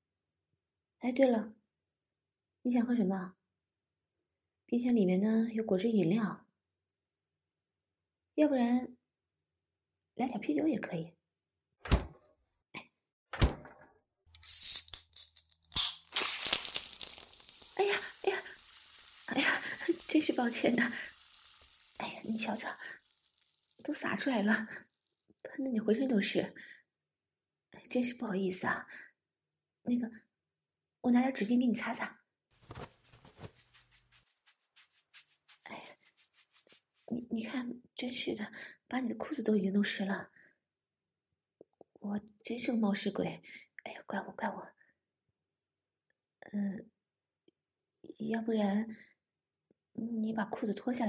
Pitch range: 170-245 Hz